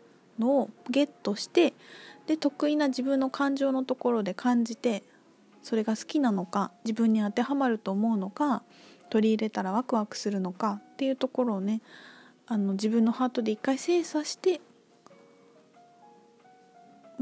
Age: 20-39